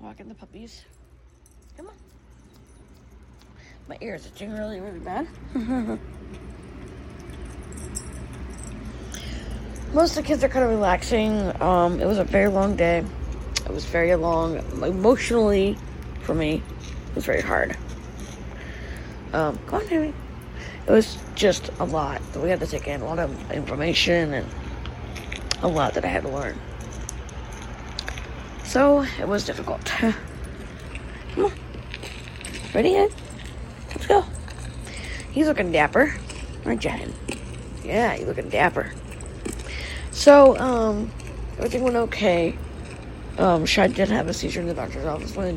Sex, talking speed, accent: female, 130 wpm, American